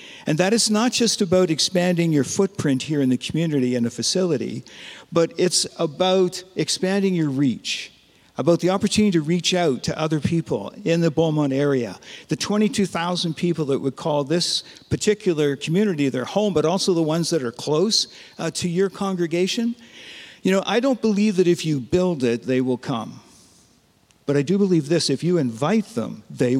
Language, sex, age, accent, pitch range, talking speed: English, male, 50-69, American, 150-195 Hz, 180 wpm